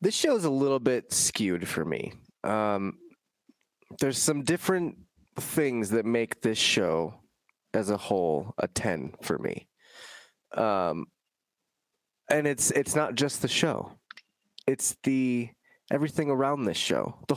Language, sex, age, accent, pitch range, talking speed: English, male, 20-39, American, 115-150 Hz, 140 wpm